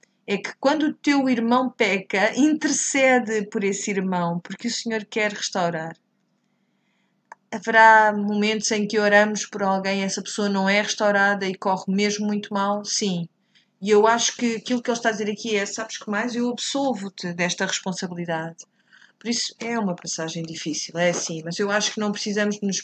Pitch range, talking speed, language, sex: 195-230 Hz, 180 wpm, Portuguese, female